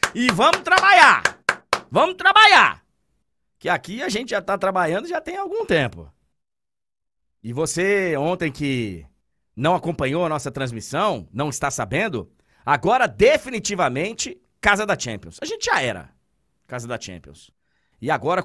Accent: Brazilian